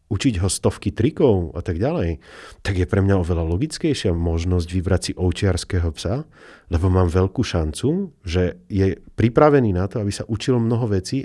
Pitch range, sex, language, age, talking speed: 85-120 Hz, male, Slovak, 40-59, 170 wpm